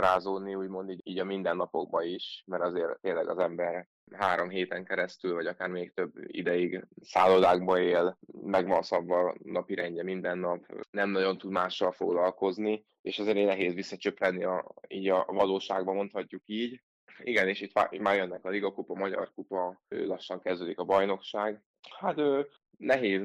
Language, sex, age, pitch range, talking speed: Hungarian, male, 20-39, 90-100 Hz, 155 wpm